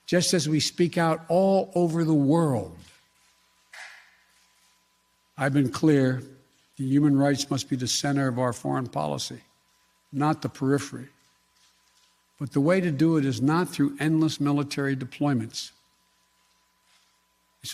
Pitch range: 135-160 Hz